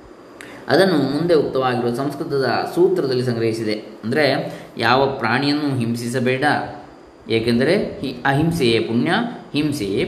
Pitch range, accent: 120-155 Hz, native